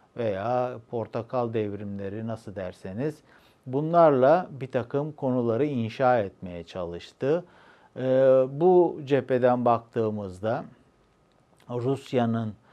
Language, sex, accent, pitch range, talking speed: Turkish, male, native, 110-160 Hz, 75 wpm